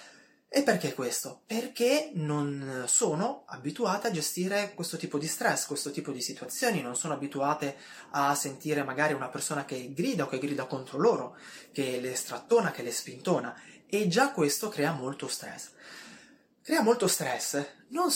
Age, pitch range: 20-39, 135-175 Hz